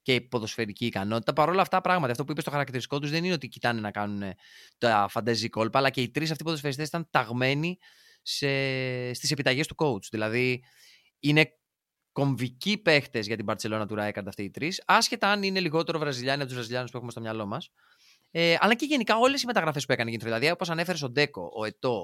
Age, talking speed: 20-39, 210 wpm